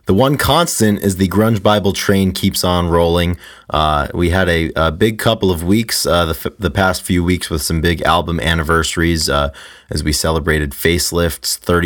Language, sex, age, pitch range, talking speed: English, male, 30-49, 80-100 Hz, 185 wpm